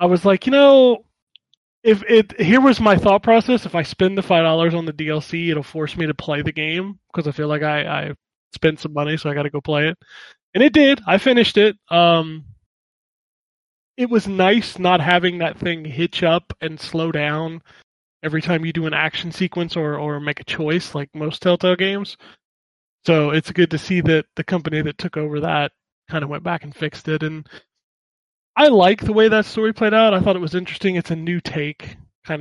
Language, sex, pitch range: English, male, 155-190 Hz